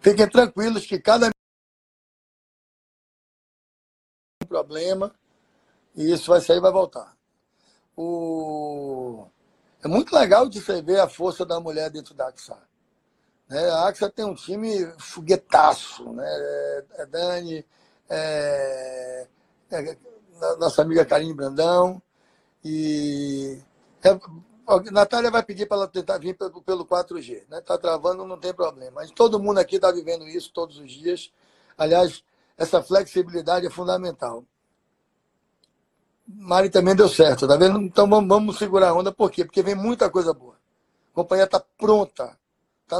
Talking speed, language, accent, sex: 125 wpm, Portuguese, Brazilian, male